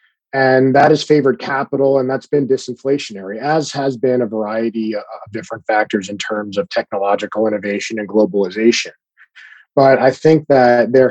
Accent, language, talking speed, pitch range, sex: American, English, 155 wpm, 105-130 Hz, male